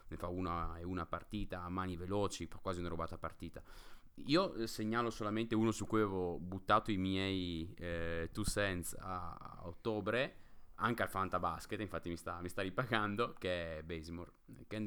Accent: native